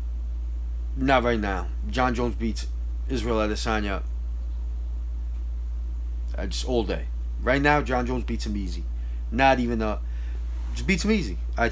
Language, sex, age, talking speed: English, male, 20-39, 145 wpm